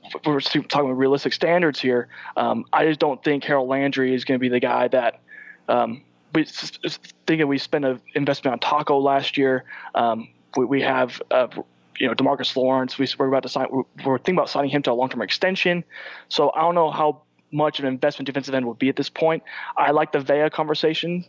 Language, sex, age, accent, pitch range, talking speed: English, male, 20-39, American, 130-155 Hz, 215 wpm